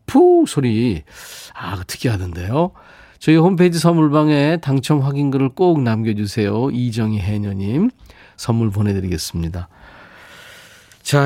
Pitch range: 105-150 Hz